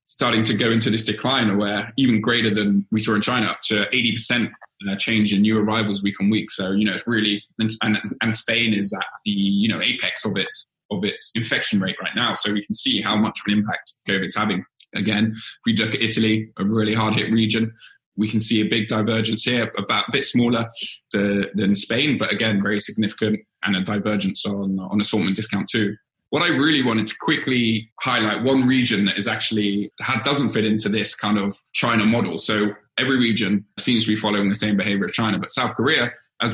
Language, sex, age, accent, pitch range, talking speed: English, male, 20-39, British, 105-115 Hz, 220 wpm